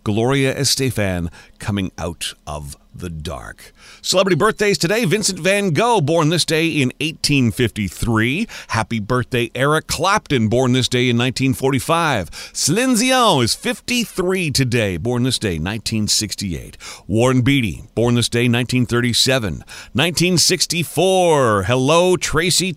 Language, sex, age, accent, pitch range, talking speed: English, male, 40-59, American, 115-165 Hz, 110 wpm